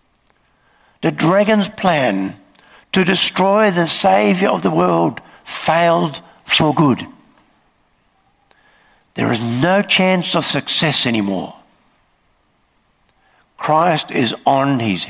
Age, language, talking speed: 60-79, English, 95 wpm